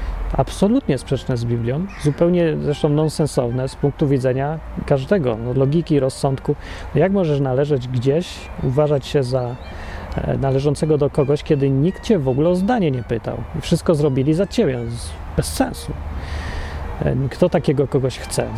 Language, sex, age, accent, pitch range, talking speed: Polish, male, 30-49, native, 120-155 Hz, 135 wpm